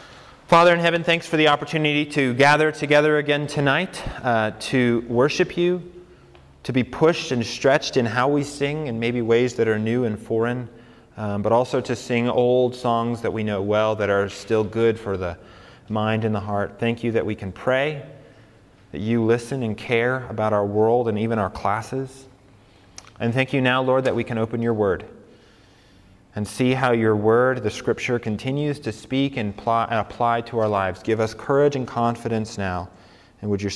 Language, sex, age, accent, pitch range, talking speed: English, male, 30-49, American, 110-140 Hz, 190 wpm